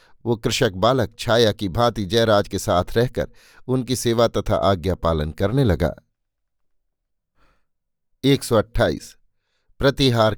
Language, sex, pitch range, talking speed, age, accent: Hindi, male, 100-125 Hz, 105 wpm, 50-69, native